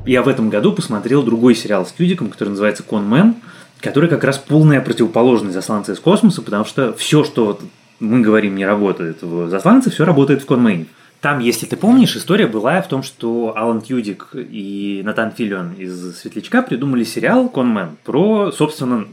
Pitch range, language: 110-155 Hz, Russian